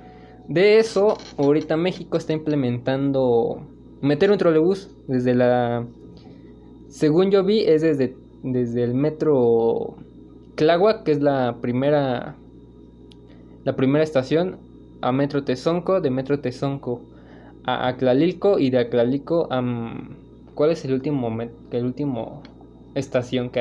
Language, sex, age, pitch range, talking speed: Spanish, male, 20-39, 120-155 Hz, 125 wpm